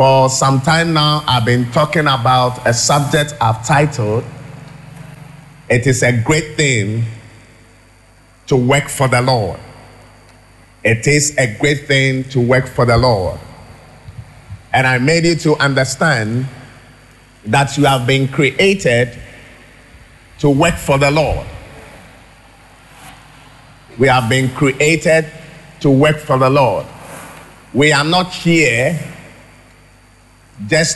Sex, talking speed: male, 120 wpm